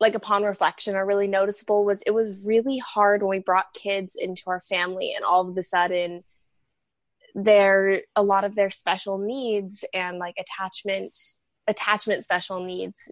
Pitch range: 185-220 Hz